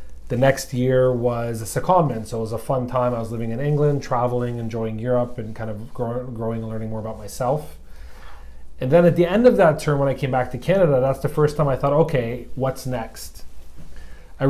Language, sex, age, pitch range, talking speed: English, male, 30-49, 110-130 Hz, 220 wpm